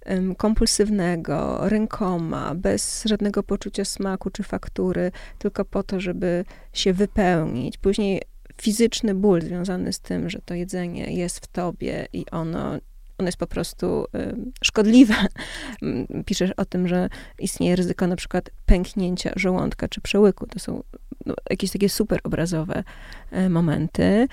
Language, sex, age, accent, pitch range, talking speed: Polish, female, 20-39, native, 185-225 Hz, 130 wpm